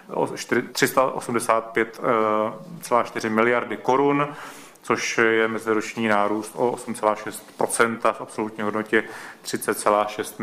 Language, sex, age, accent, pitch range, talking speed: Czech, male, 30-49, native, 105-115 Hz, 75 wpm